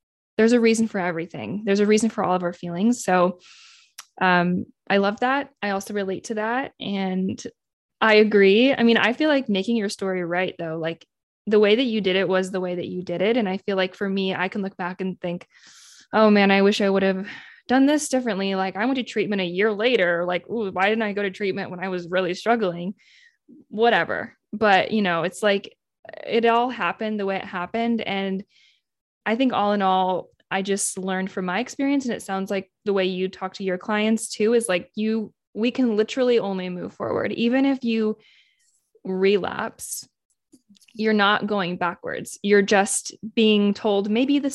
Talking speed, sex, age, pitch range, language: 205 wpm, female, 20-39, 185-230 Hz, English